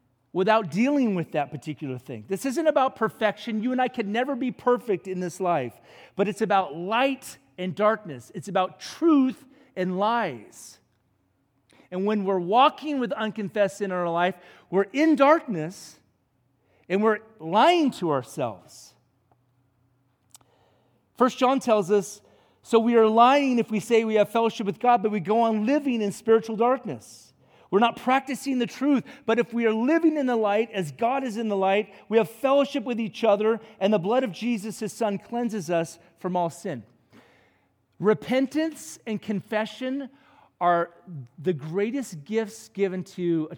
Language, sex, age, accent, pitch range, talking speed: English, male, 40-59, American, 155-230 Hz, 165 wpm